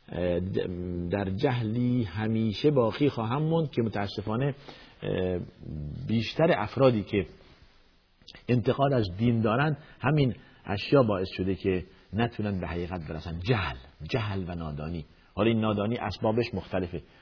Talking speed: 115 wpm